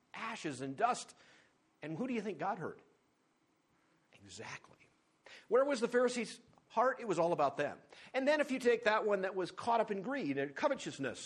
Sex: male